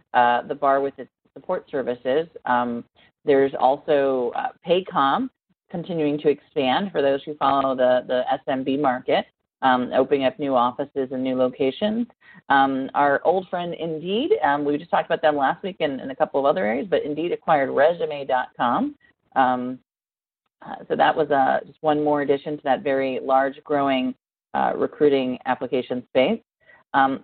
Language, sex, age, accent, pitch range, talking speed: English, female, 40-59, American, 135-165 Hz, 165 wpm